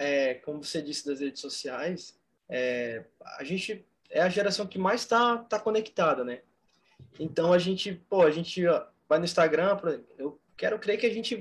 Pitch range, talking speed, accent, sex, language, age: 160-210 Hz, 195 wpm, Brazilian, male, Portuguese, 20-39